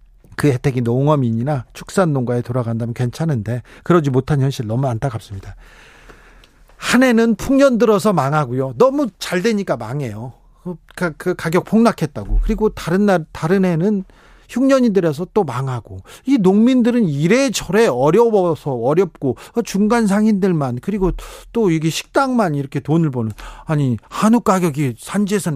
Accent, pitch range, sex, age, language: native, 140-210 Hz, male, 40-59, Korean